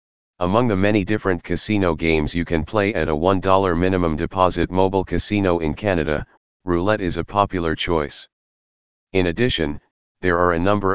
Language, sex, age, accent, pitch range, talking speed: English, male, 40-59, American, 80-95 Hz, 160 wpm